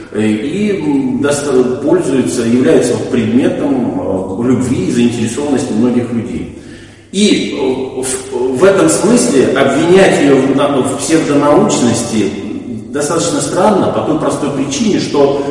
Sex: male